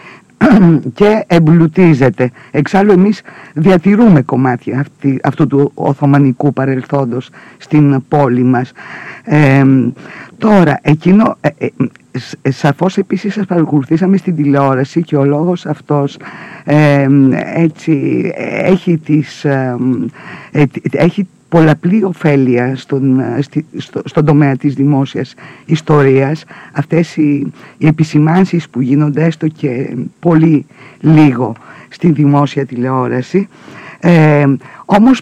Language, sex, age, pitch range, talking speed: Greek, female, 50-69, 135-170 Hz, 100 wpm